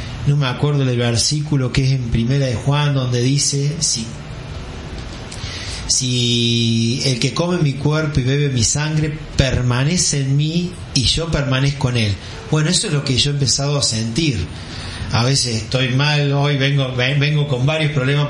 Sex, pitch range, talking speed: male, 120-145 Hz, 170 wpm